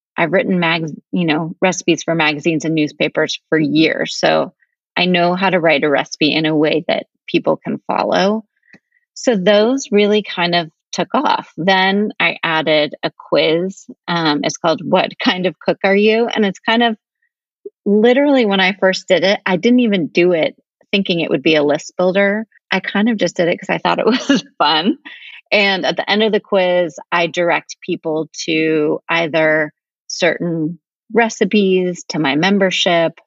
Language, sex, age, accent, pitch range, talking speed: English, female, 30-49, American, 160-210 Hz, 180 wpm